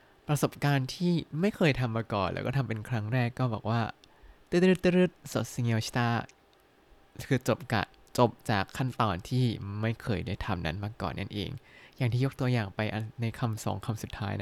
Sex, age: male, 20-39